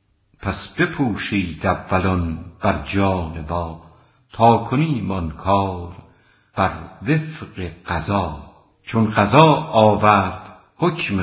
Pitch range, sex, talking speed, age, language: 90-110 Hz, female, 80 wpm, 70-89, Persian